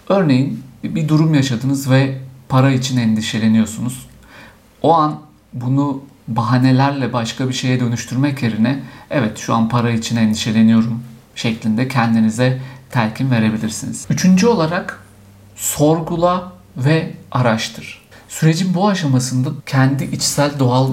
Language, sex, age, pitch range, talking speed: Turkish, male, 50-69, 115-145 Hz, 110 wpm